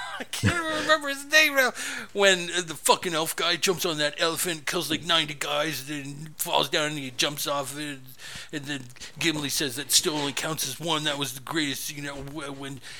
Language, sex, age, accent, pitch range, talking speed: English, male, 50-69, American, 125-160 Hz, 195 wpm